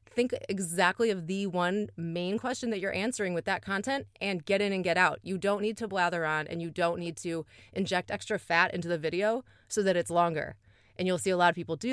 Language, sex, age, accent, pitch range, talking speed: English, female, 20-39, American, 165-215 Hz, 240 wpm